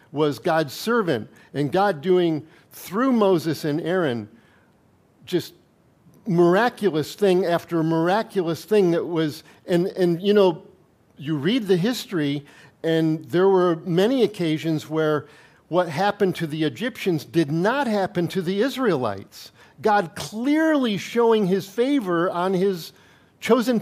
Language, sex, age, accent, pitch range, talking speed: English, male, 50-69, American, 160-205 Hz, 130 wpm